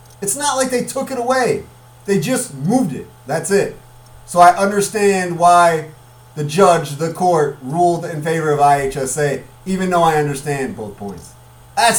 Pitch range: 150-230 Hz